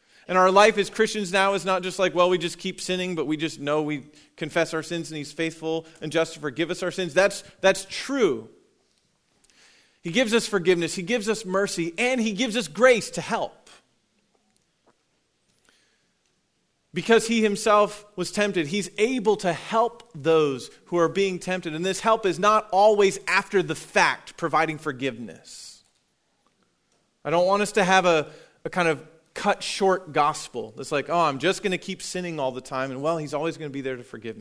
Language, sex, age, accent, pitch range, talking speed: English, male, 30-49, American, 155-205 Hz, 195 wpm